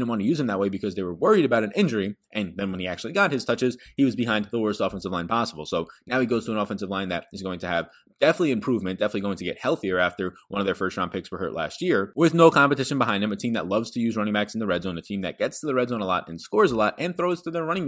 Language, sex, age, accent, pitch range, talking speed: English, male, 20-39, American, 95-125 Hz, 320 wpm